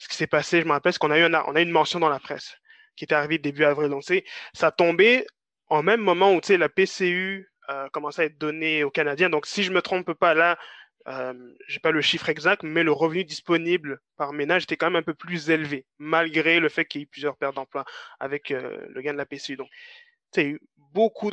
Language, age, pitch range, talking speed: French, 20-39, 145-175 Hz, 260 wpm